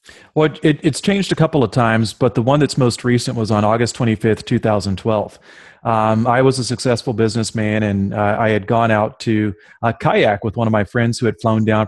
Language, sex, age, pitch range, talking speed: English, male, 30-49, 110-125 Hz, 215 wpm